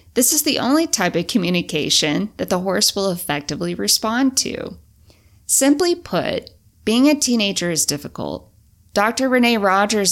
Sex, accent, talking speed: female, American, 140 wpm